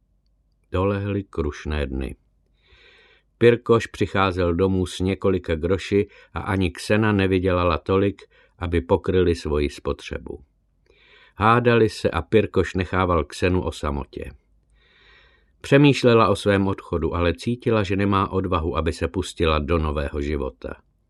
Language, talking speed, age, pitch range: Czech, 115 wpm, 50-69, 80-105 Hz